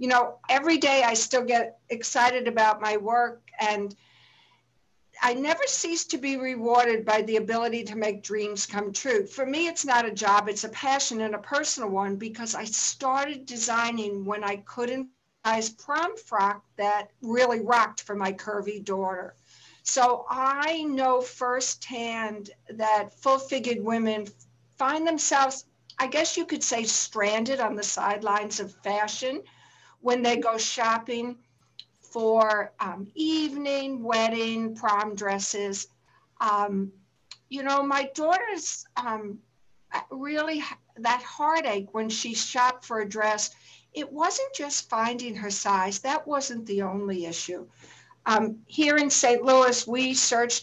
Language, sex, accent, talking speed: English, female, American, 140 wpm